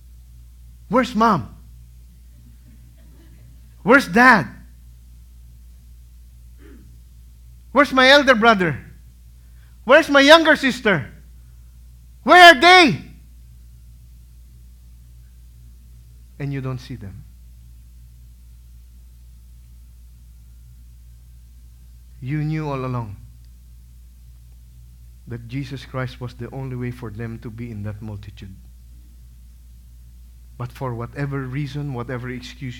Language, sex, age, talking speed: English, male, 50-69, 80 wpm